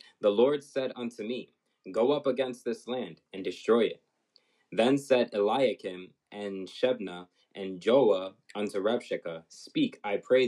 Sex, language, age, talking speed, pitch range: male, English, 20-39, 145 wpm, 110-140 Hz